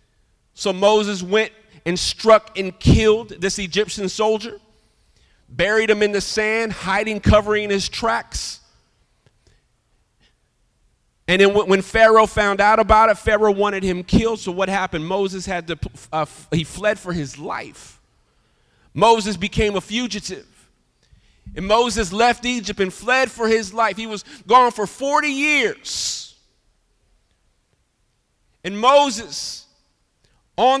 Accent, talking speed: American, 125 wpm